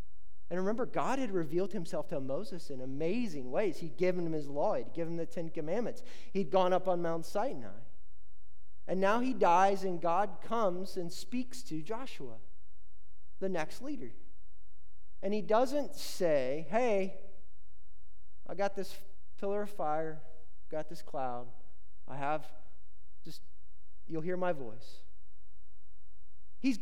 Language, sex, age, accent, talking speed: English, male, 30-49, American, 145 wpm